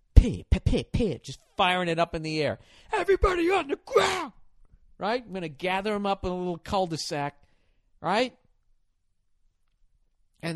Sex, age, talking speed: male, 50-69, 135 wpm